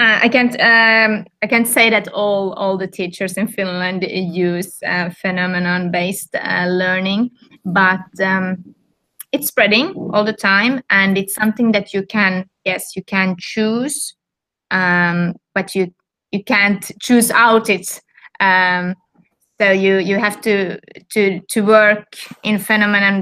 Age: 20-39